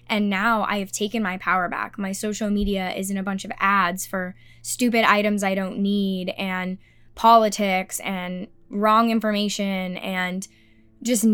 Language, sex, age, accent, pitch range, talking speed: English, female, 10-29, American, 190-220 Hz, 160 wpm